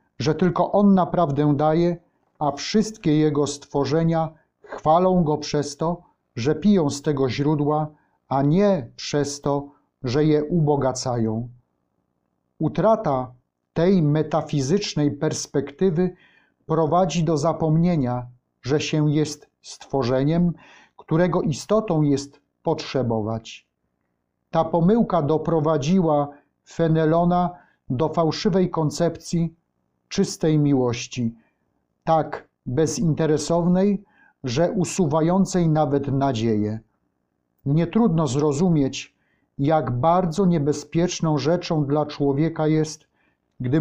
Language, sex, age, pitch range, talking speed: Polish, male, 30-49, 140-170 Hz, 90 wpm